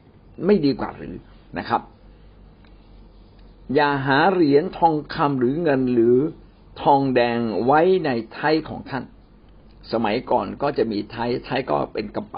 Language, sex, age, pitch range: Thai, male, 60-79, 110-145 Hz